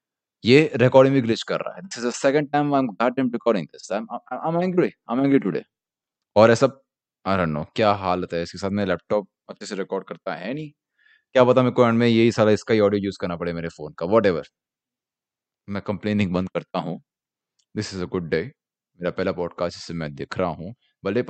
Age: 20-39